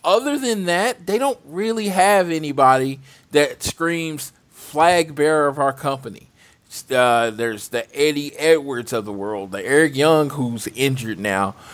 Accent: American